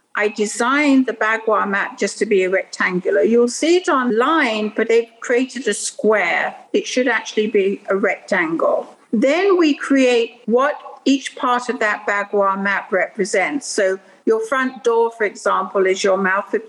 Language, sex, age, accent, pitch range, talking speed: English, female, 60-79, British, 215-270 Hz, 165 wpm